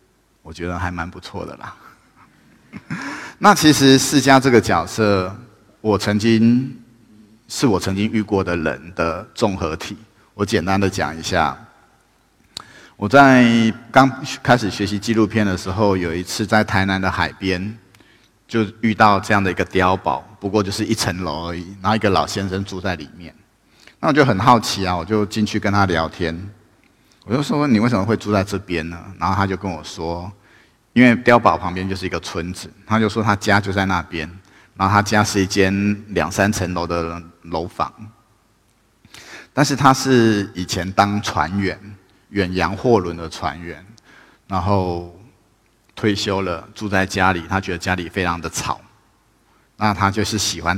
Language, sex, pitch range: Chinese, male, 90-110 Hz